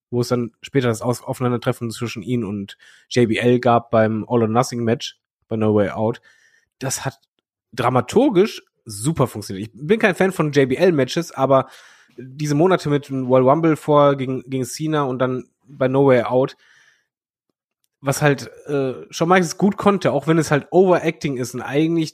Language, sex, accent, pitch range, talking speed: German, male, German, 125-150 Hz, 165 wpm